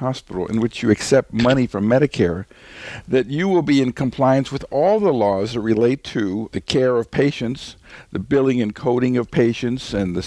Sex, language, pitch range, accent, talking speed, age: male, English, 100-125 Hz, American, 195 wpm, 60-79